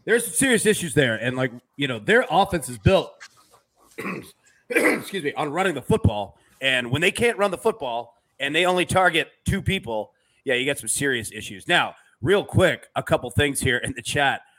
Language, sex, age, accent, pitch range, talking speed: English, male, 30-49, American, 125-170 Hz, 200 wpm